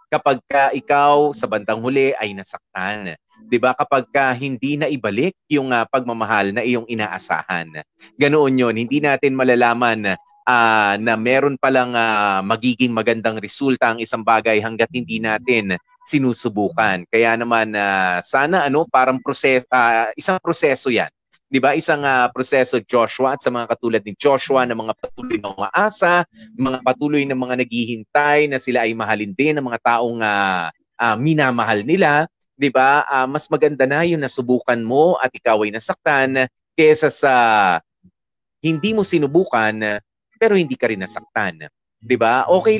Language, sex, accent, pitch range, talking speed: English, male, Filipino, 115-145 Hz, 155 wpm